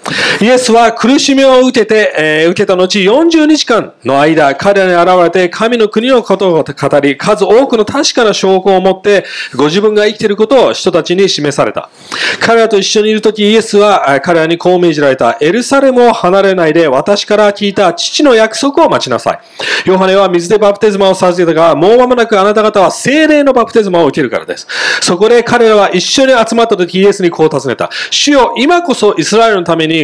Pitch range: 175-225 Hz